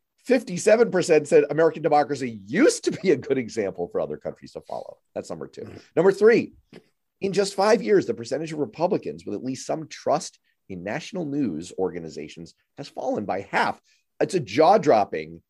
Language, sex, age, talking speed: English, male, 40-59, 165 wpm